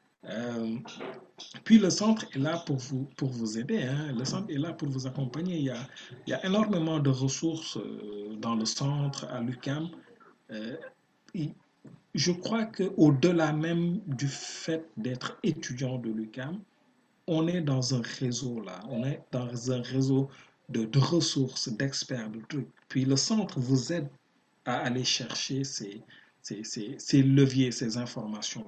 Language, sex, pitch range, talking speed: French, male, 125-155 Hz, 165 wpm